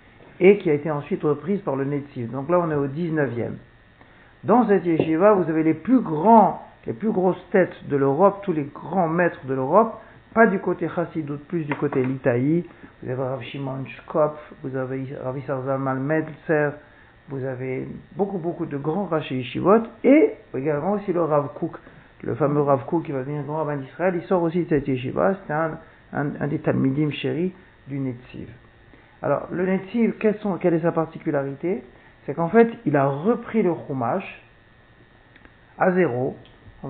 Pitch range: 135-185 Hz